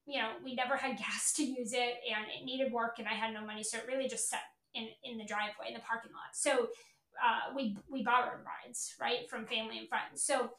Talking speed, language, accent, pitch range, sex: 245 wpm, English, American, 230-275 Hz, female